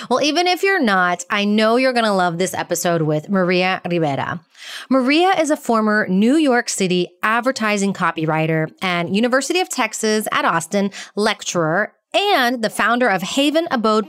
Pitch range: 185-260 Hz